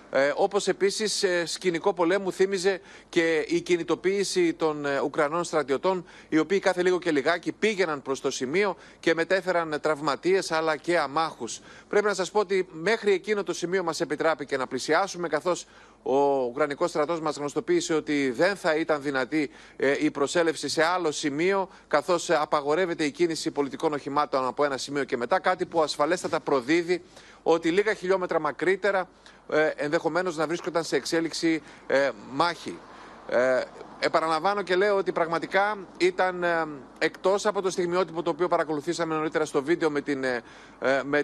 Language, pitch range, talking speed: Greek, 150-185 Hz, 150 wpm